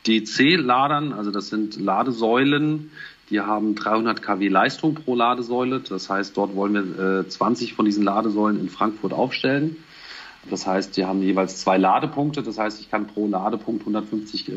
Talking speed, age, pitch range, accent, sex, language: 160 wpm, 40-59, 95-115 Hz, German, male, German